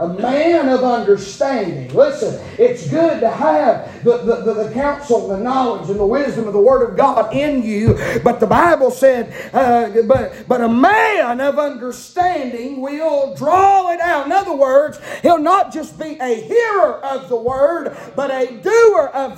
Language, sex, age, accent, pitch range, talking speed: English, male, 40-59, American, 220-330 Hz, 180 wpm